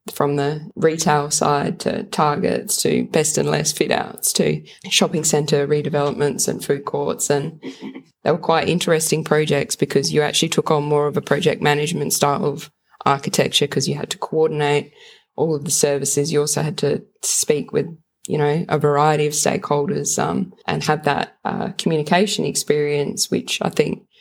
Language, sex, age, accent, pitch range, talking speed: English, female, 20-39, Australian, 150-170 Hz, 170 wpm